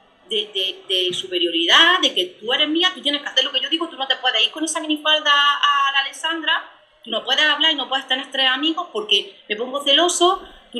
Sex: female